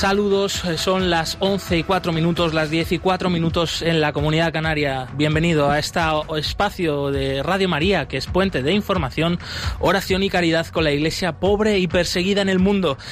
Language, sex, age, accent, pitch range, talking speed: Spanish, male, 30-49, Spanish, 130-165 Hz, 185 wpm